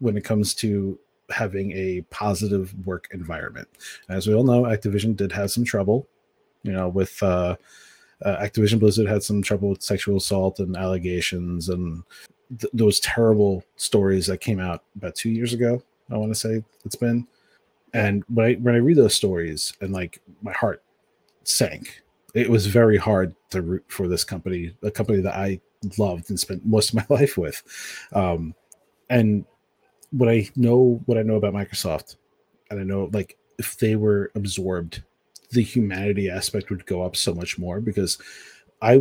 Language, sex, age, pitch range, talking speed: English, male, 30-49, 95-110 Hz, 175 wpm